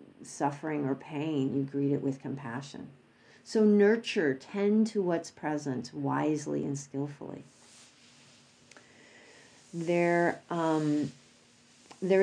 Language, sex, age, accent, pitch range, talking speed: English, female, 50-69, American, 150-200 Hz, 100 wpm